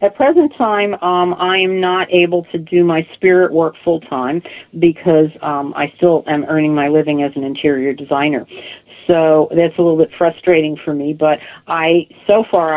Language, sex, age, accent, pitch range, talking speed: English, female, 50-69, American, 150-180 Hz, 185 wpm